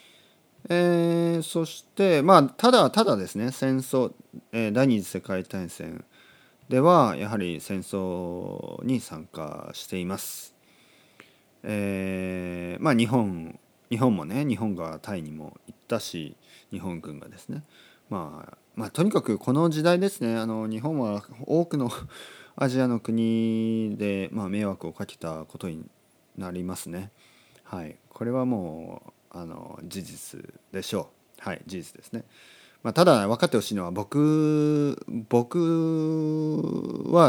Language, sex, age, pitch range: Japanese, male, 40-59, 95-140 Hz